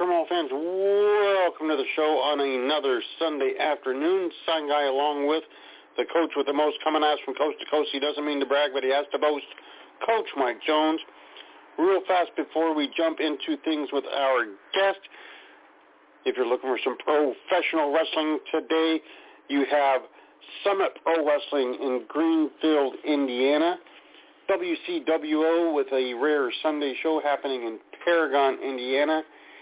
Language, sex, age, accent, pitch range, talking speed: English, male, 50-69, American, 145-180 Hz, 150 wpm